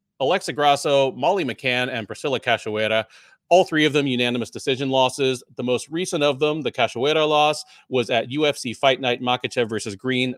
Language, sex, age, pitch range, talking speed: English, male, 30-49, 120-155 Hz, 175 wpm